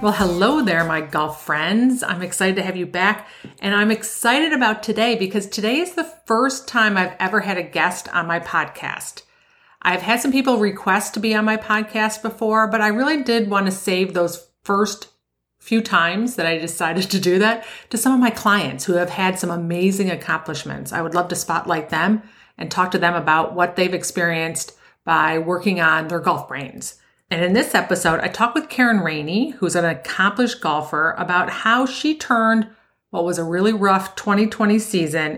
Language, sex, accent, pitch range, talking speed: English, female, American, 175-220 Hz, 195 wpm